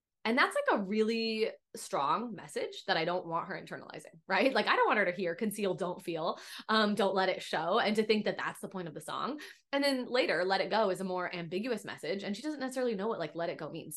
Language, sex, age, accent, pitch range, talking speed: English, female, 20-39, American, 180-225 Hz, 260 wpm